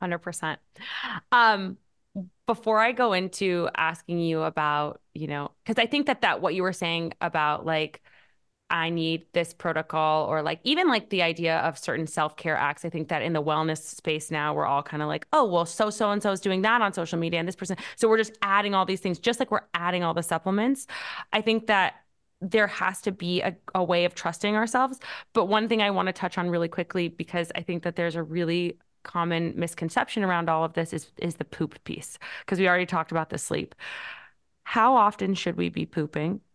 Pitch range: 165-220 Hz